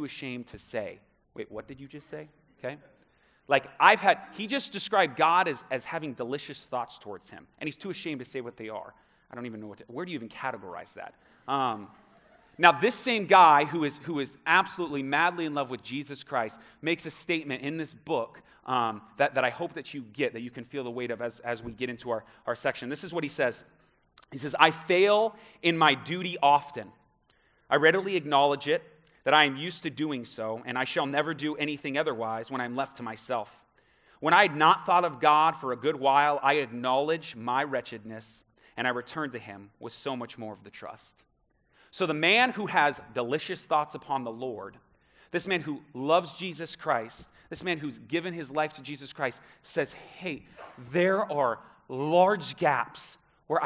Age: 30-49